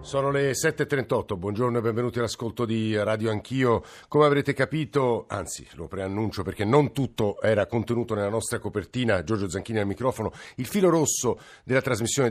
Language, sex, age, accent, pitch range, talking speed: Italian, male, 50-69, native, 100-120 Hz, 160 wpm